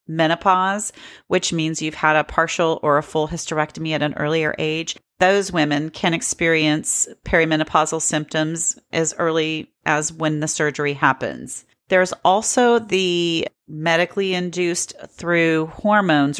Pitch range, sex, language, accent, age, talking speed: 155-175 Hz, female, English, American, 40-59, 130 wpm